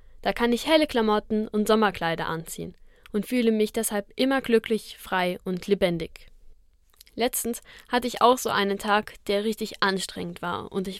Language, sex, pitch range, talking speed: German, female, 195-235 Hz, 165 wpm